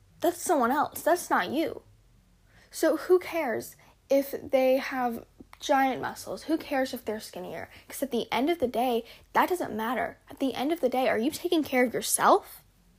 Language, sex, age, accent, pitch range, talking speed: English, female, 10-29, American, 225-300 Hz, 190 wpm